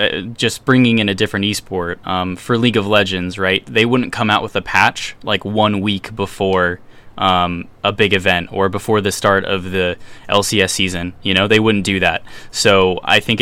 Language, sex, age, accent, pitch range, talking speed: English, male, 10-29, American, 95-110 Hz, 190 wpm